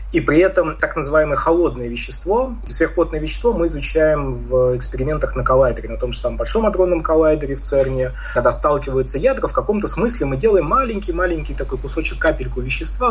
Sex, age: male, 20-39